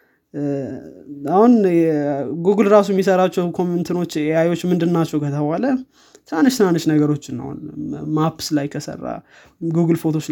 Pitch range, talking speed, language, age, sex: 150-175 Hz, 105 wpm, Amharic, 20-39, male